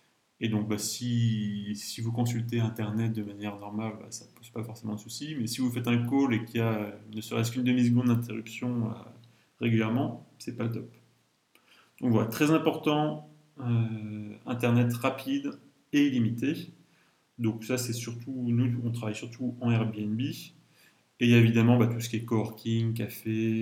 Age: 30-49